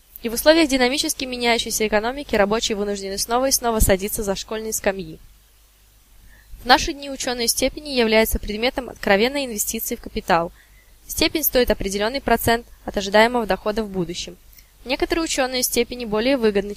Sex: female